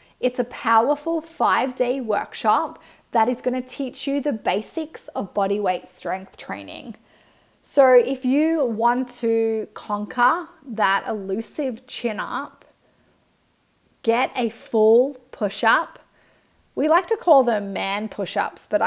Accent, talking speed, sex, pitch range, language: Australian, 125 wpm, female, 205-260 Hz, English